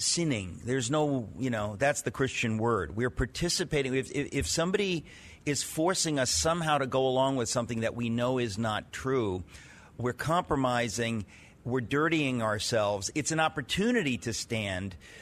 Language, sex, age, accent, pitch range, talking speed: English, male, 50-69, American, 115-150 Hz, 160 wpm